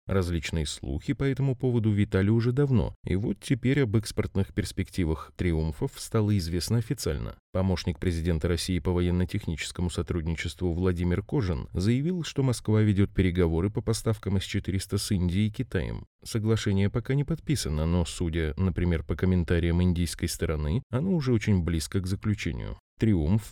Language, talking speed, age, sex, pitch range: Russian, 145 wpm, 20-39, male, 90-115 Hz